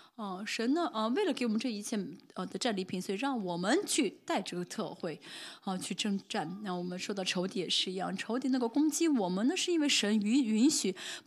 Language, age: Chinese, 20-39